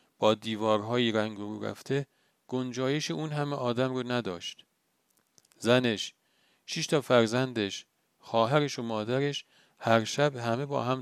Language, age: Persian, 40-59